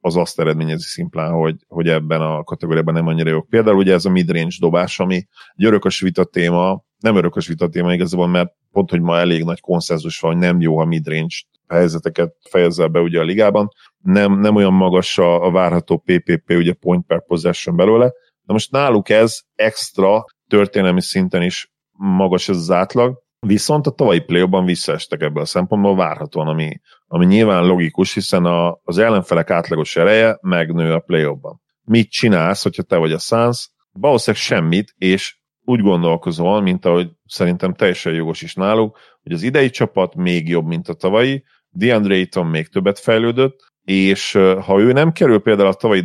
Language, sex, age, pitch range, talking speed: Hungarian, male, 40-59, 85-100 Hz, 175 wpm